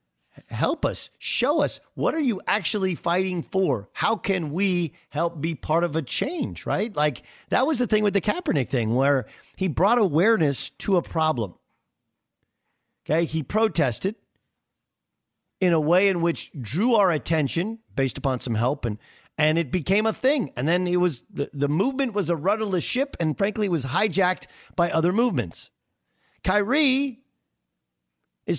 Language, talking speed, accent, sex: English, 160 wpm, American, male